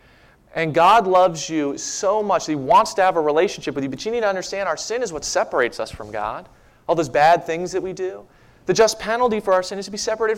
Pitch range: 130-185 Hz